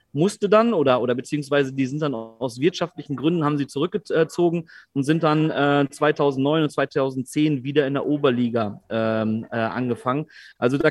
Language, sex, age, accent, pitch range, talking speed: German, male, 30-49, German, 140-165 Hz, 150 wpm